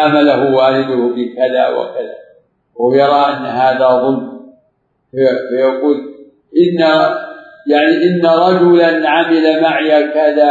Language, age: Arabic, 50-69